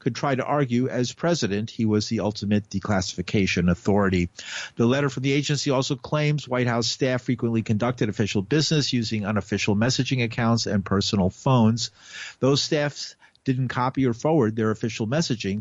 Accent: American